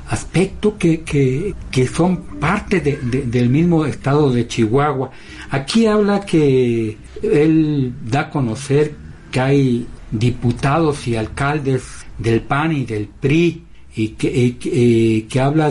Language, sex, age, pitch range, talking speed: Spanish, male, 60-79, 125-170 Hz, 140 wpm